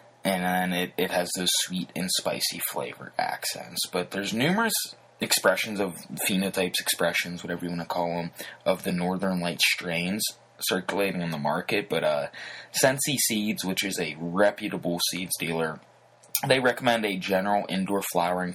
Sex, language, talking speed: male, English, 160 wpm